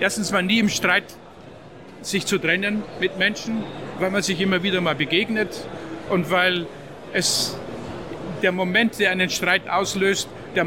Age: 50-69